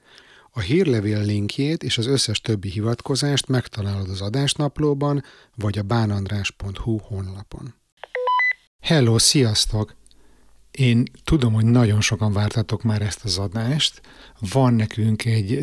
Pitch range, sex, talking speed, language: 105-125 Hz, male, 115 wpm, Hungarian